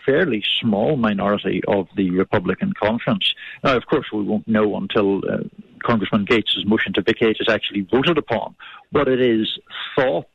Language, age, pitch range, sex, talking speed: English, 50-69, 105-140 Hz, male, 160 wpm